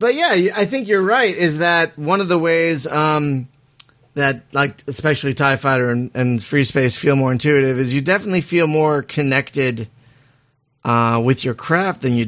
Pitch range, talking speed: 125-155 Hz, 180 wpm